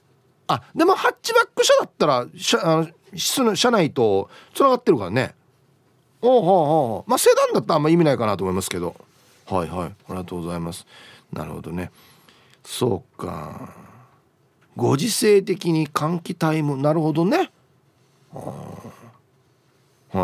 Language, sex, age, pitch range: Japanese, male, 40-59, 130-200 Hz